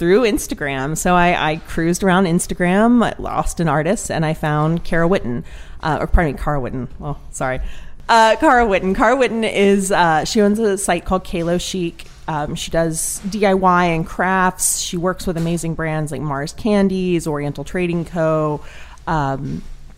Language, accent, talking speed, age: English, American, 170 wpm, 30-49